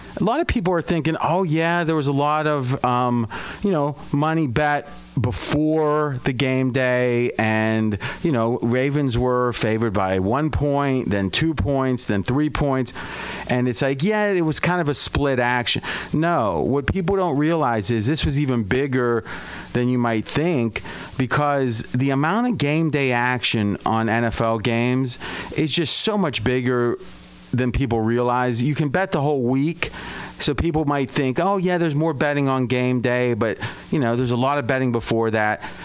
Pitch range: 120-150 Hz